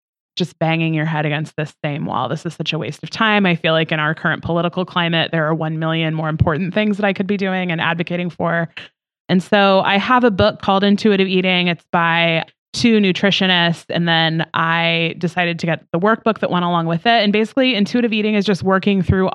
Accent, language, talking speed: American, English, 225 wpm